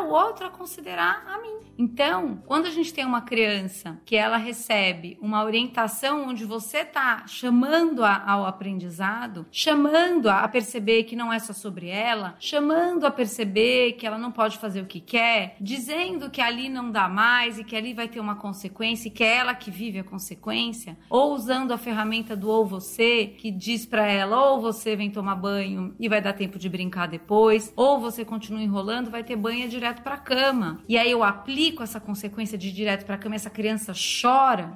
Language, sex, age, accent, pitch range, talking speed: Portuguese, female, 30-49, Brazilian, 215-290 Hz, 195 wpm